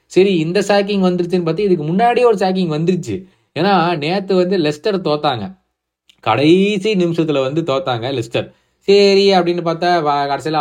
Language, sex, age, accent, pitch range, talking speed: Tamil, male, 20-39, native, 115-170 Hz, 135 wpm